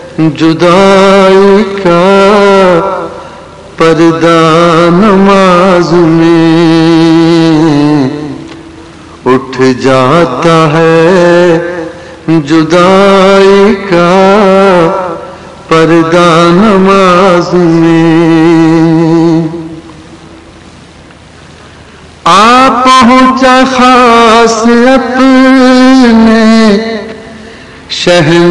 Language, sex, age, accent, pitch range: English, male, 50-69, Indian, 165-215 Hz